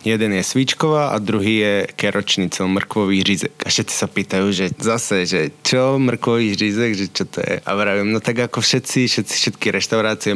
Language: Slovak